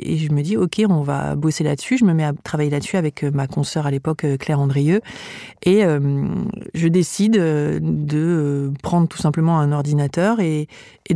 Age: 40-59